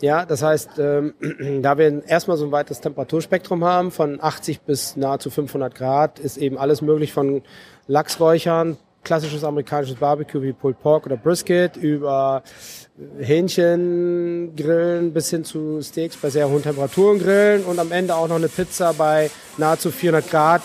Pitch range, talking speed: 140-160 Hz, 155 wpm